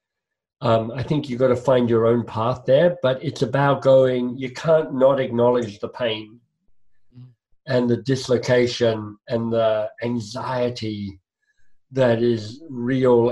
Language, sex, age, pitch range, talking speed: English, male, 50-69, 115-135 Hz, 135 wpm